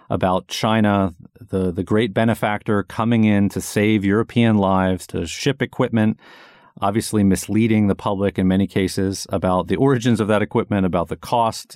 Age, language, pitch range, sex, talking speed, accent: 40-59, English, 95-115 Hz, male, 160 wpm, American